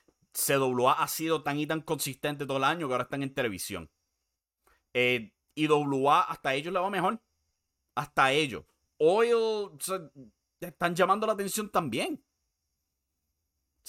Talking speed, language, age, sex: 145 wpm, Spanish, 30-49, male